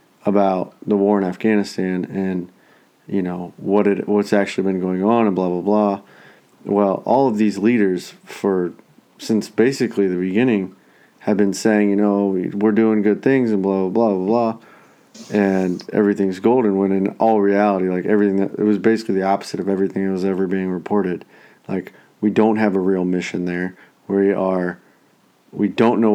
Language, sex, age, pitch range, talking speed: English, male, 30-49, 95-105 Hz, 185 wpm